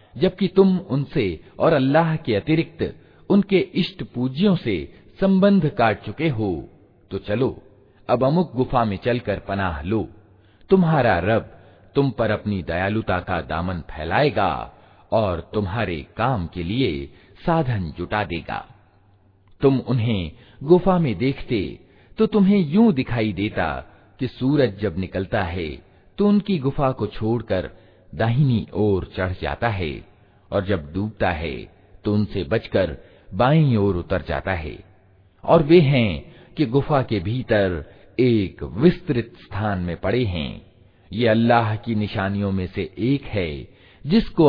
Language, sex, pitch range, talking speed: Hindi, male, 95-135 Hz, 135 wpm